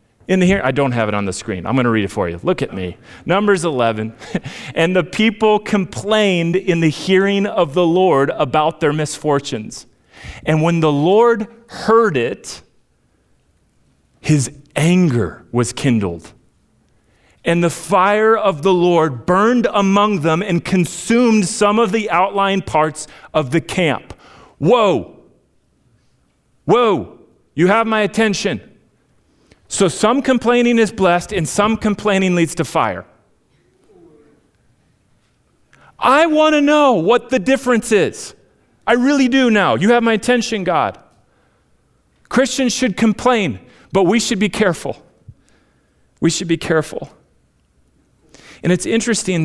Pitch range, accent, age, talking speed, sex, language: 150-215 Hz, American, 40-59, 135 wpm, male, English